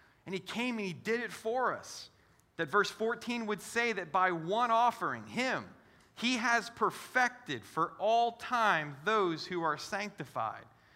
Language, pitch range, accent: English, 140-205 Hz, American